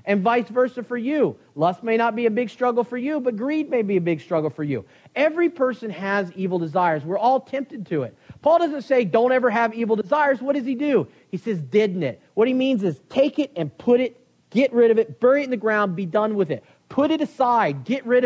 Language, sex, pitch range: English, male, 180-245 Hz